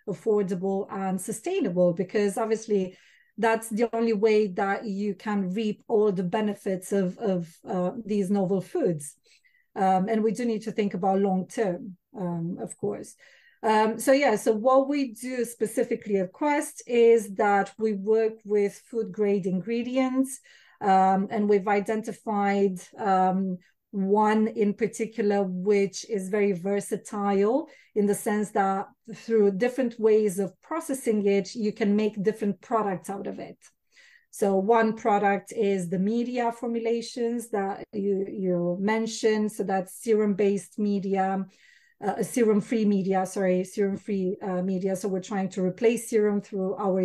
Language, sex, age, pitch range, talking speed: English, female, 40-59, 195-225 Hz, 145 wpm